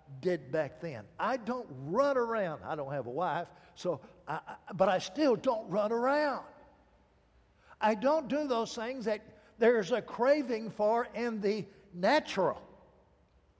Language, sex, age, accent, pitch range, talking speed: English, male, 60-79, American, 170-240 Hz, 140 wpm